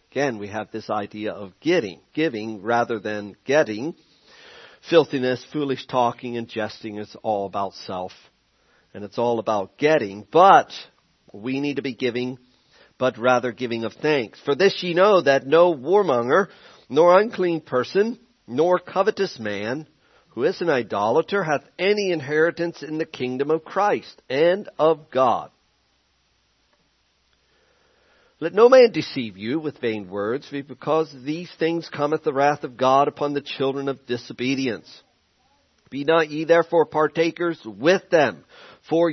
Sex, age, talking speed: male, 50-69, 145 wpm